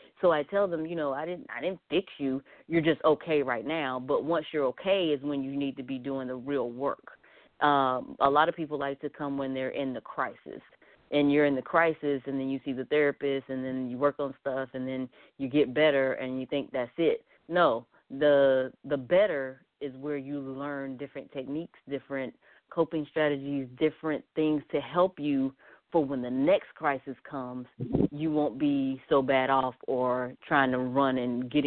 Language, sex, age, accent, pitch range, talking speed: English, female, 30-49, American, 130-155 Hz, 205 wpm